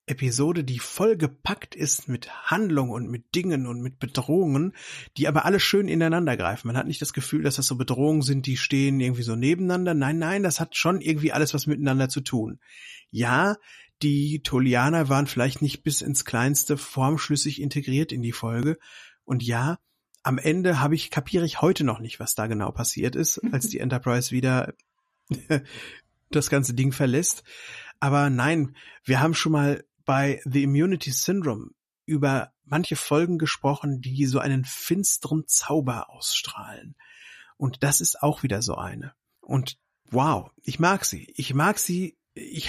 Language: German